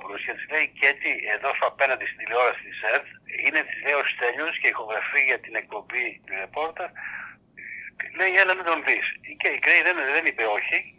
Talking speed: 185 wpm